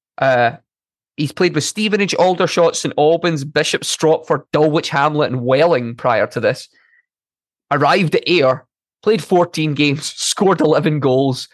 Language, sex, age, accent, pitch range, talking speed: English, male, 20-39, British, 125-155 Hz, 135 wpm